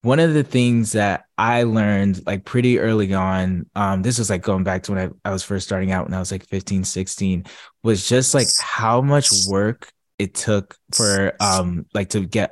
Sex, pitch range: male, 95-115 Hz